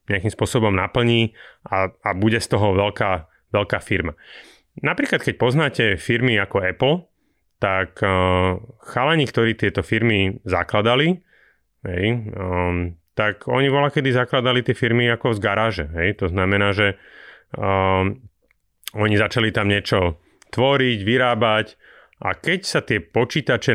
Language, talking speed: Slovak, 115 wpm